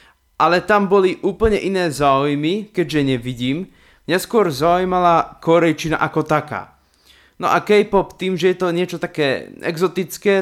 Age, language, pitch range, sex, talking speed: 20-39, Slovak, 130-175 Hz, male, 140 wpm